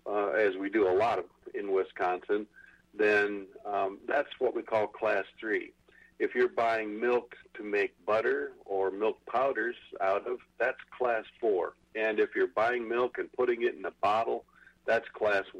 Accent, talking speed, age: American, 170 wpm, 50-69